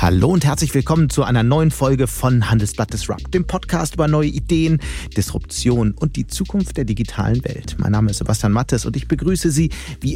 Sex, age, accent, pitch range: male, 40-59, German, 105-145 Hz